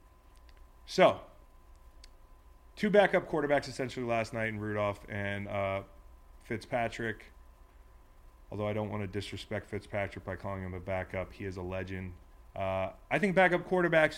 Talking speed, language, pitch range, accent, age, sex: 140 wpm, English, 95-115 Hz, American, 30-49, male